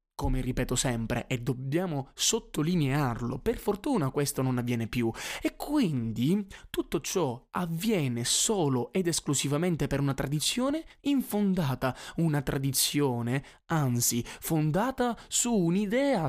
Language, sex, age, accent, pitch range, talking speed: Italian, male, 20-39, native, 130-195 Hz, 110 wpm